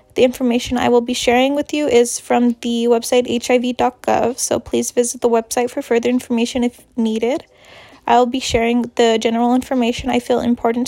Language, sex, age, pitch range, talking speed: English, female, 10-29, 235-255 Hz, 175 wpm